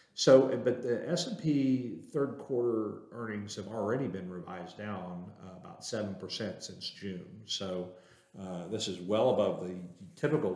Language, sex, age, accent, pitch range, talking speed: English, male, 50-69, American, 90-120 Hz, 140 wpm